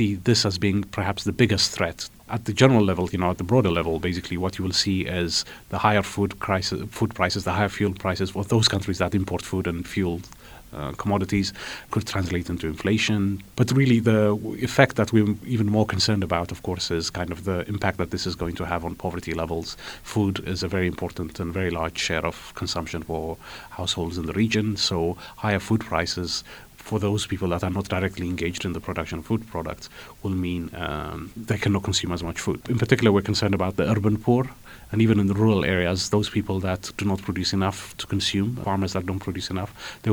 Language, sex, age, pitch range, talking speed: English, male, 30-49, 90-105 Hz, 215 wpm